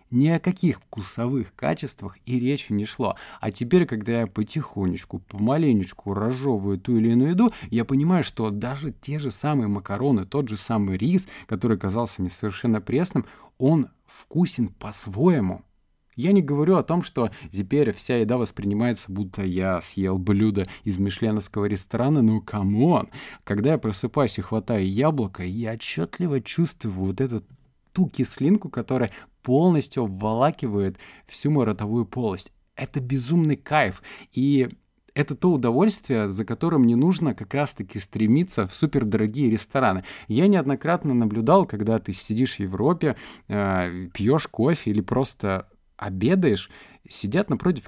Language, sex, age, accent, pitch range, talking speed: Russian, male, 20-39, native, 105-140 Hz, 140 wpm